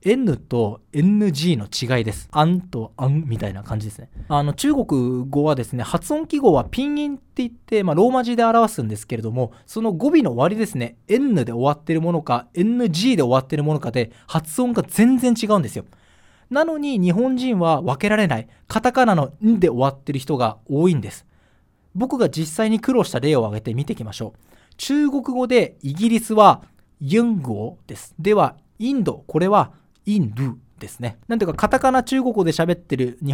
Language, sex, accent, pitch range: Japanese, male, native, 125-210 Hz